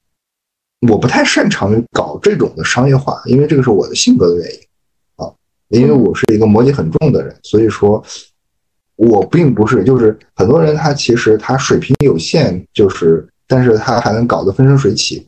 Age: 20-39